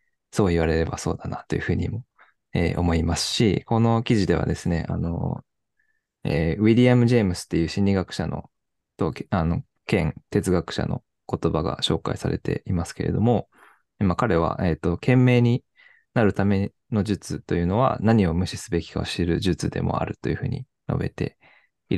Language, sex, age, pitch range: Japanese, male, 20-39, 85-110 Hz